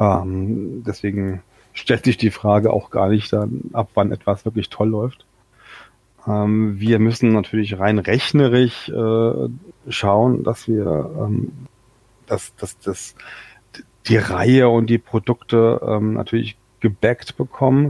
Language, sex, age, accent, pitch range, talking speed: German, male, 30-49, German, 105-120 Hz, 130 wpm